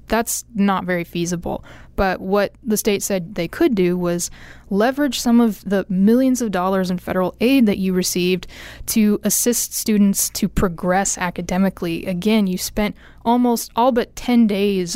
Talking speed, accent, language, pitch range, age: 160 wpm, American, English, 185-225 Hz, 20-39